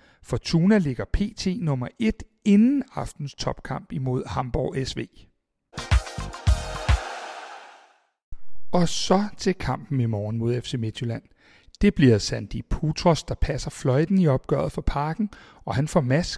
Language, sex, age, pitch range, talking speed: Danish, male, 60-79, 130-190 Hz, 130 wpm